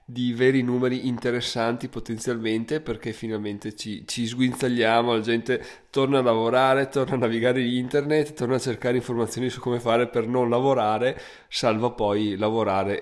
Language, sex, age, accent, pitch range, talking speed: Italian, male, 20-39, native, 110-130 Hz, 150 wpm